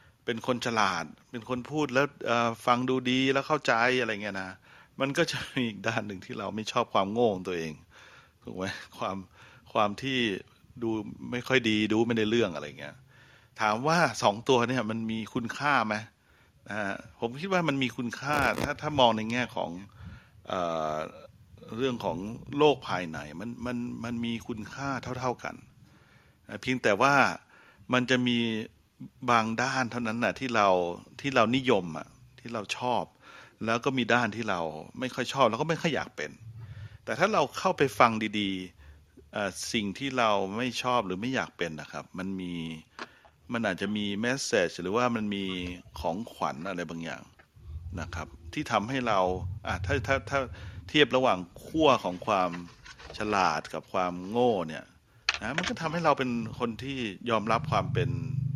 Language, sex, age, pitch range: English, male, 60-79, 100-130 Hz